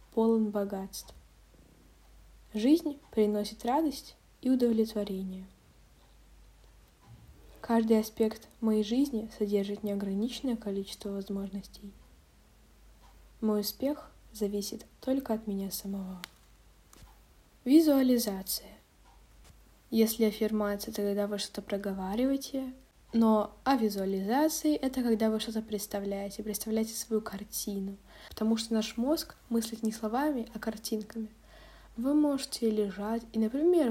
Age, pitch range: 20-39, 205-235 Hz